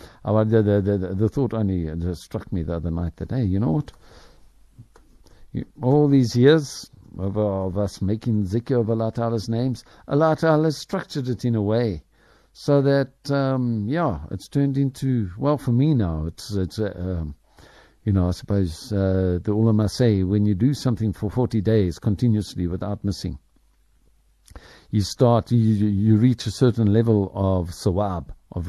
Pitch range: 90-115 Hz